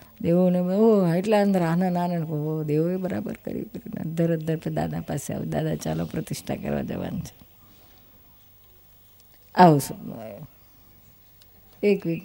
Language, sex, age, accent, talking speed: Gujarati, female, 50-69, native, 100 wpm